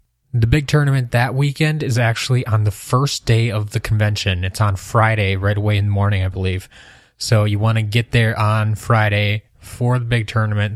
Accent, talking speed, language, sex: American, 200 wpm, English, male